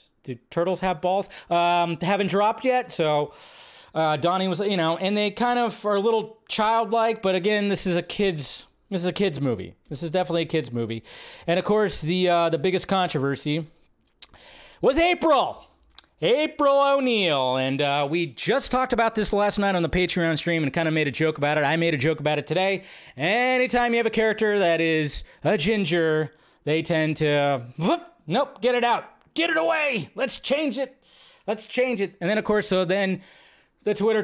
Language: English